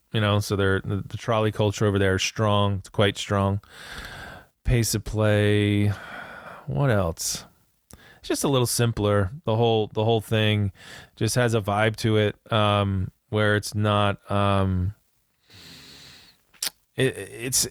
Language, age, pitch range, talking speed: English, 20-39, 105-125 Hz, 140 wpm